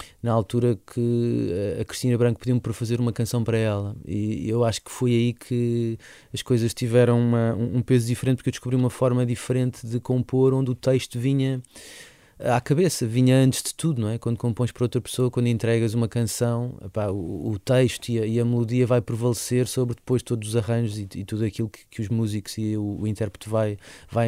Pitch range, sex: 110-130 Hz, male